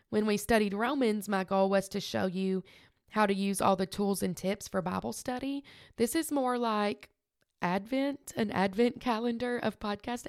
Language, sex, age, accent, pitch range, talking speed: English, female, 20-39, American, 190-225 Hz, 180 wpm